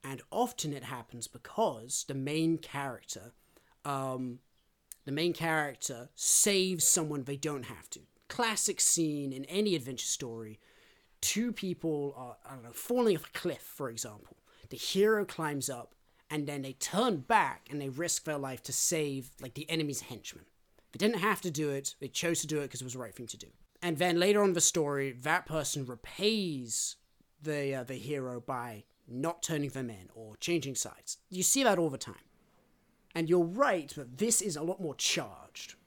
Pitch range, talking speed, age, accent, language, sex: 130-175 Hz, 185 wpm, 30-49, British, English, male